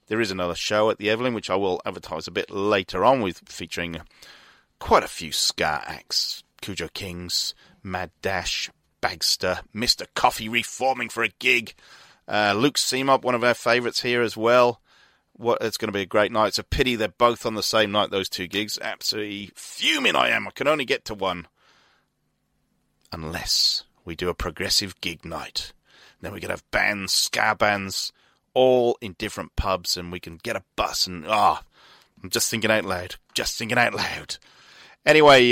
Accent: British